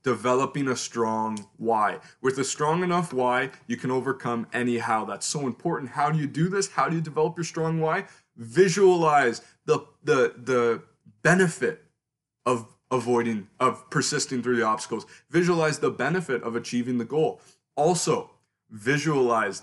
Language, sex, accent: English, male, American